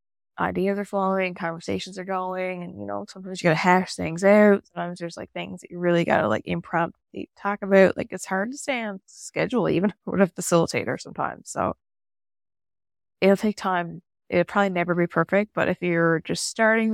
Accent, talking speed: American, 190 wpm